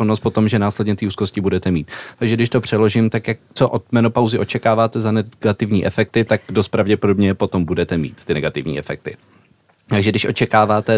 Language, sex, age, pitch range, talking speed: Czech, male, 20-39, 100-115 Hz, 175 wpm